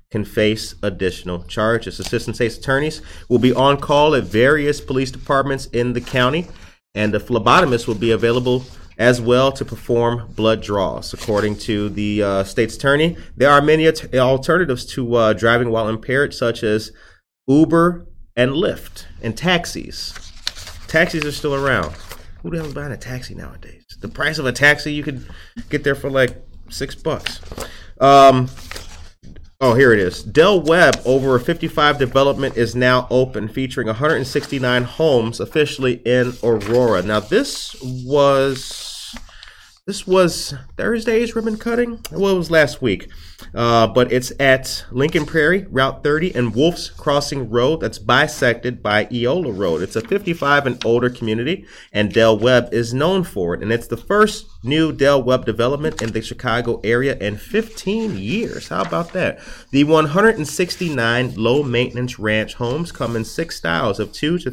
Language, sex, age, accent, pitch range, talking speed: English, male, 30-49, American, 115-150 Hz, 160 wpm